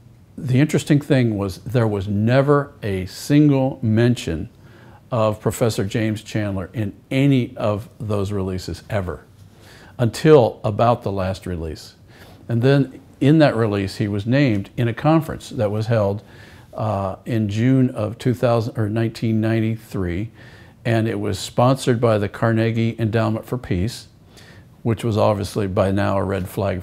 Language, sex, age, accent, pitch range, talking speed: English, male, 50-69, American, 105-125 Hz, 140 wpm